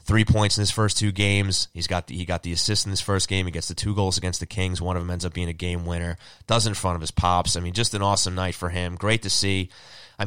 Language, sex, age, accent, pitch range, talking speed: English, male, 20-39, American, 90-110 Hz, 315 wpm